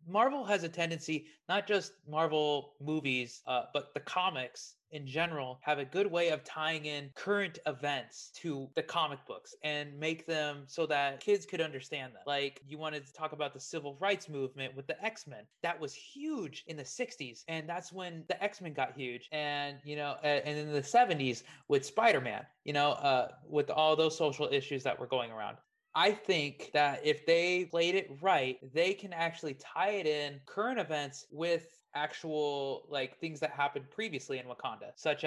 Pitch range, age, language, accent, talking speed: 145-175 Hz, 20-39, English, American, 185 wpm